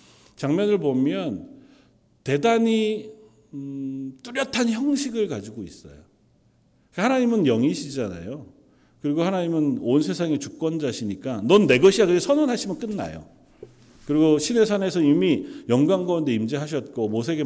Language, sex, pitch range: Korean, male, 130-210 Hz